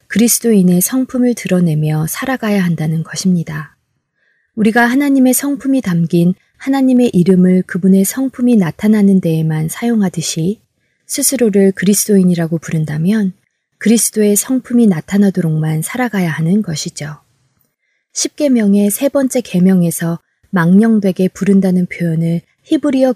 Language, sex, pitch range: Korean, female, 170-215 Hz